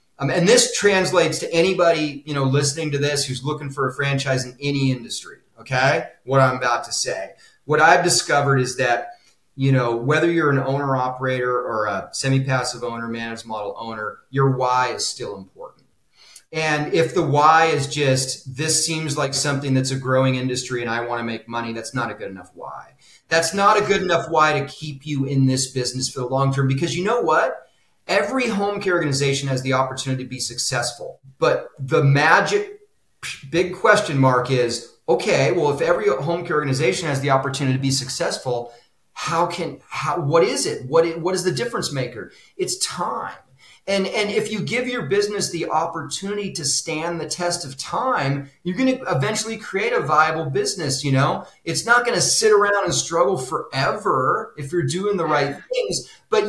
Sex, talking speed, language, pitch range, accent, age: male, 190 wpm, English, 130-195 Hz, American, 30-49